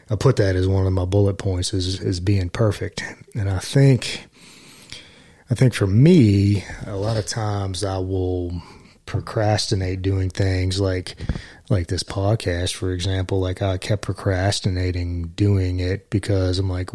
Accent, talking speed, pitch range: American, 155 wpm, 90-105 Hz